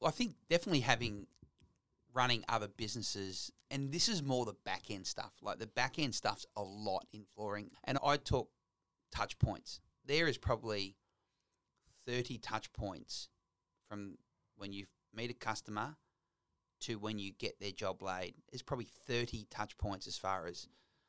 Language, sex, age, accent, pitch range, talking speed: English, male, 30-49, Australian, 105-125 Hz, 155 wpm